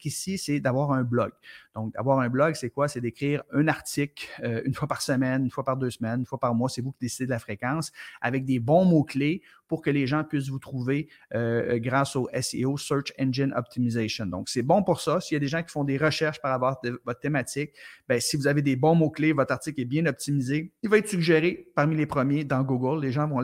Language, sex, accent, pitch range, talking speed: French, male, Canadian, 120-145 Hz, 250 wpm